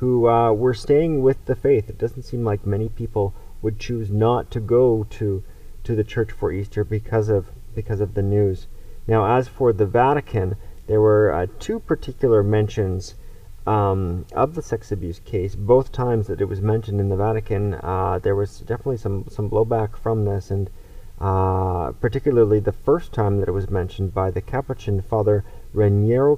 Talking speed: 180 wpm